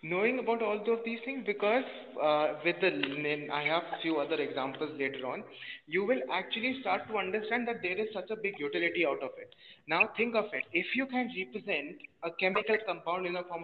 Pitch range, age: 165-230 Hz, 30-49